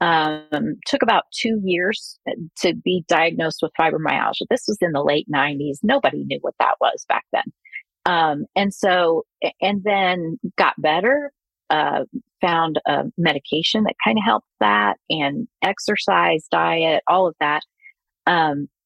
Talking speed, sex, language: 145 wpm, female, English